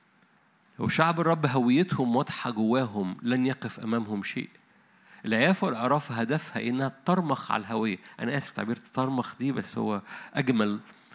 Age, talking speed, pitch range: 50-69, 130 wpm, 115-155 Hz